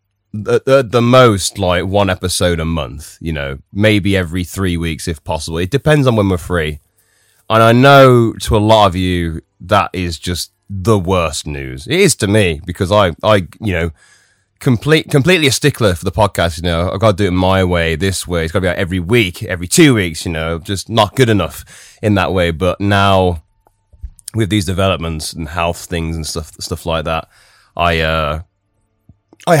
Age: 20-39